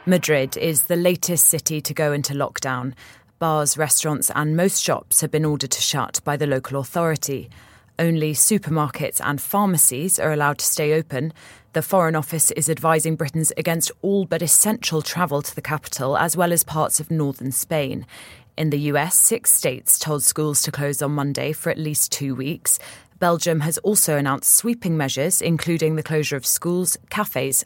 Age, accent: 30-49, British